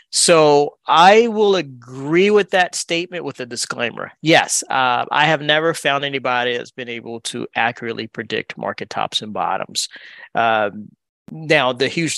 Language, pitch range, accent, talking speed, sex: English, 115-145 Hz, American, 155 wpm, male